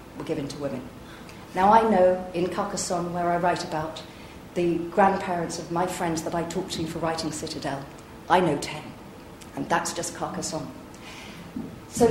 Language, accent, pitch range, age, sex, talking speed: English, British, 165-205 Hz, 40-59, female, 165 wpm